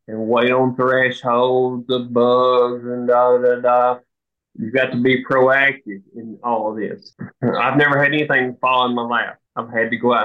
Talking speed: 180 wpm